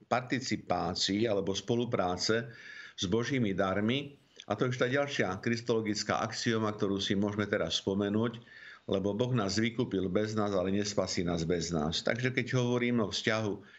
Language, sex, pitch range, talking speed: Slovak, male, 95-115 Hz, 150 wpm